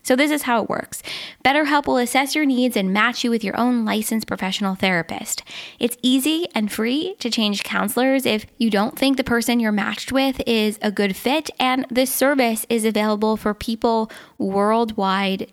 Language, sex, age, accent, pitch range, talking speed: English, female, 10-29, American, 215-265 Hz, 185 wpm